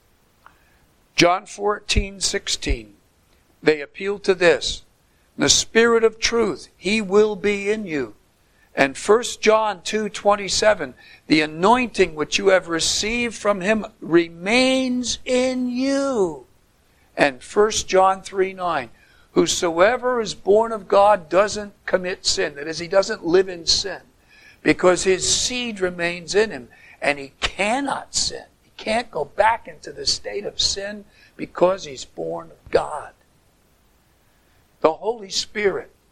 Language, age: English, 60-79